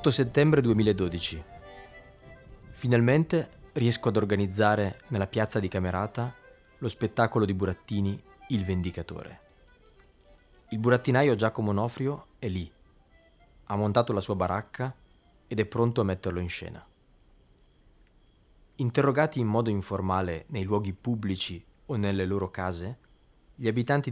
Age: 20-39